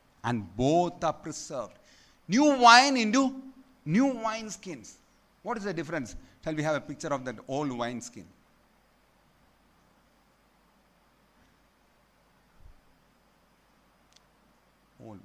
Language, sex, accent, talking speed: Malayalam, male, native, 95 wpm